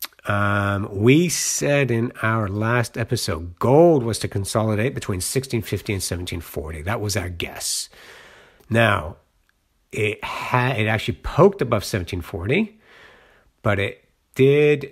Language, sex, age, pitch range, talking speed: English, male, 50-69, 95-125 Hz, 135 wpm